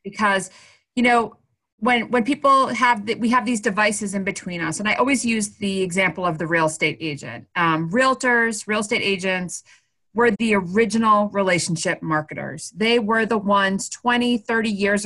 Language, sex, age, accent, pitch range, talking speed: English, female, 30-49, American, 195-245 Hz, 170 wpm